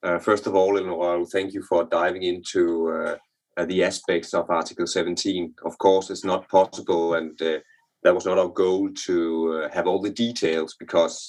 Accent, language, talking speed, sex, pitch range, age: native, Danish, 185 wpm, male, 80-115 Hz, 30-49